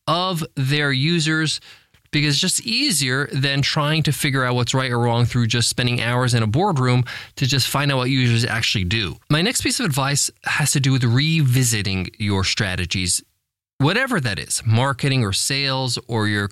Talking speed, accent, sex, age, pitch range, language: 185 wpm, American, male, 20-39, 125-175 Hz, English